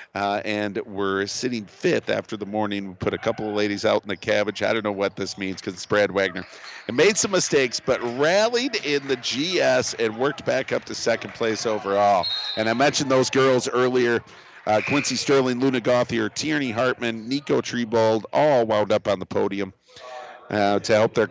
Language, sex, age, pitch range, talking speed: English, male, 50-69, 100-125 Hz, 195 wpm